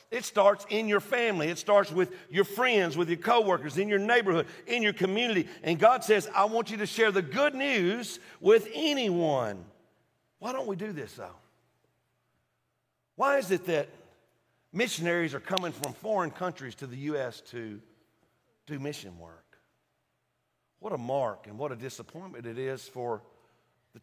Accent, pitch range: American, 150-235 Hz